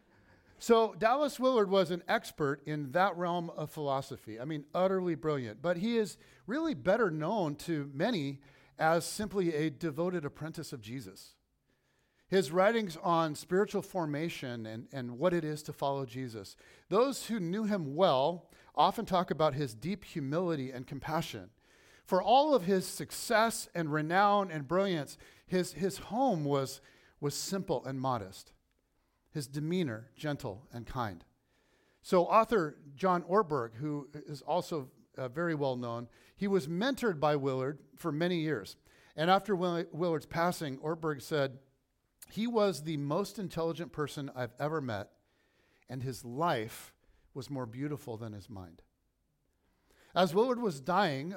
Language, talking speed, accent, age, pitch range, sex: English, 145 wpm, American, 50-69, 135-180 Hz, male